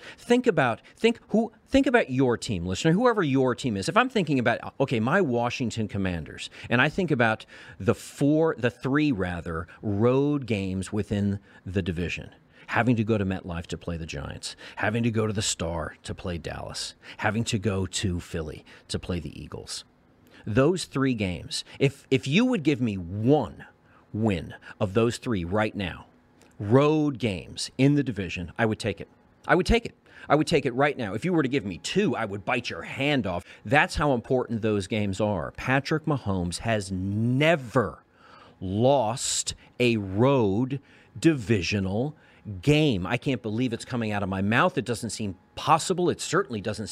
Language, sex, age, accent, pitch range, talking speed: English, male, 40-59, American, 100-140 Hz, 180 wpm